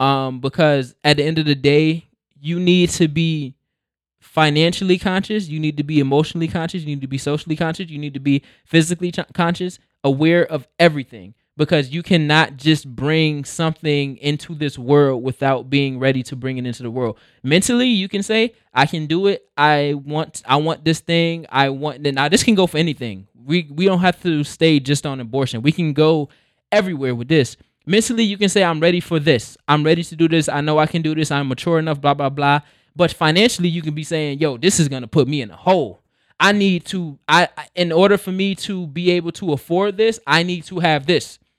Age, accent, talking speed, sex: 20-39, American, 220 wpm, male